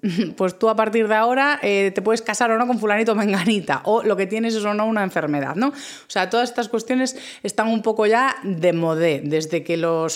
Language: Spanish